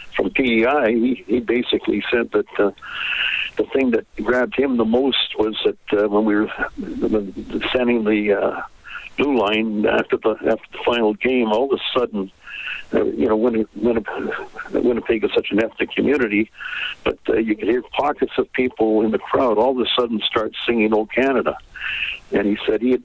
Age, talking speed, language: 60-79, 180 wpm, English